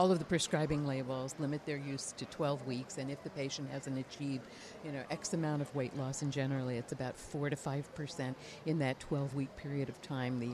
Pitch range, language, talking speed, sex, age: 130-165 Hz, English, 220 wpm, female, 50-69